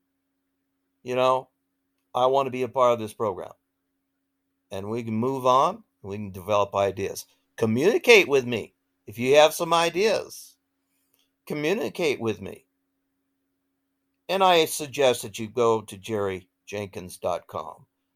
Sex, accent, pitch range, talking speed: male, American, 90-130 Hz, 130 wpm